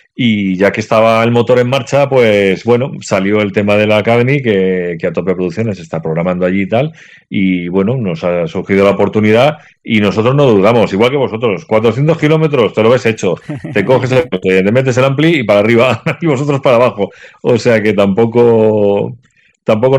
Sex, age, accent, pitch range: male, 40-59, Spanish, 95-115 Hz